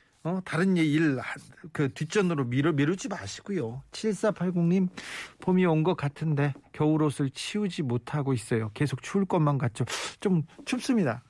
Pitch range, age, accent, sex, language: 130-175 Hz, 40-59, native, male, Korean